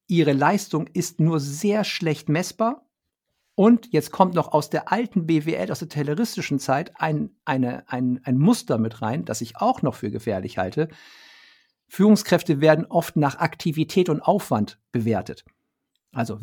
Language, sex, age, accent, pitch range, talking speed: German, male, 50-69, German, 125-175 Hz, 155 wpm